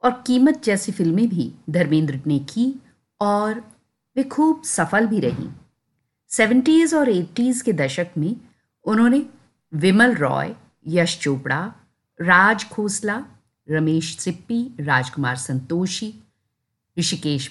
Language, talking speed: Hindi, 110 wpm